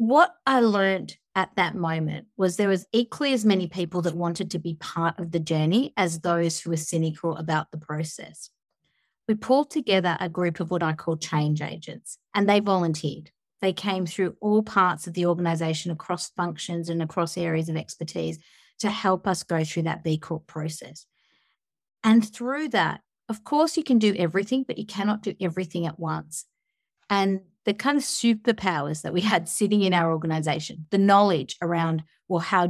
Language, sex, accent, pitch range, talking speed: English, female, Australian, 160-195 Hz, 185 wpm